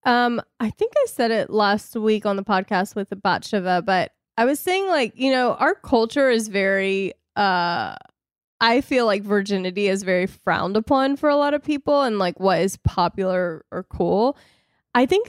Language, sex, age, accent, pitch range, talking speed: English, female, 20-39, American, 195-265 Hz, 190 wpm